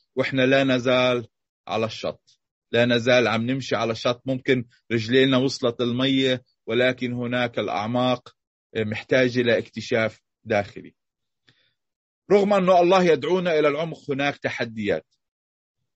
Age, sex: 30-49, male